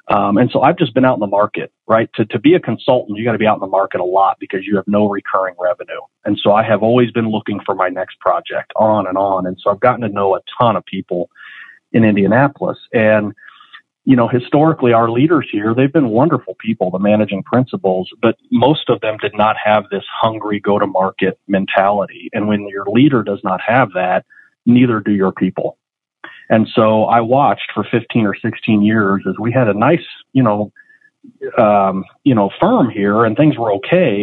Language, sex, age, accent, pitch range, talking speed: English, male, 40-59, American, 100-115 Hz, 215 wpm